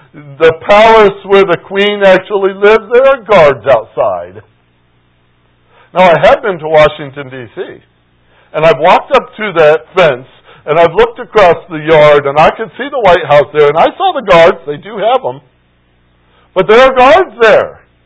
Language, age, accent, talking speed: English, 60-79, American, 175 wpm